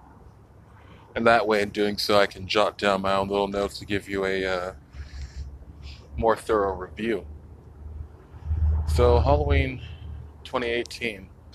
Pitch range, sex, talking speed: 100-115 Hz, male, 130 wpm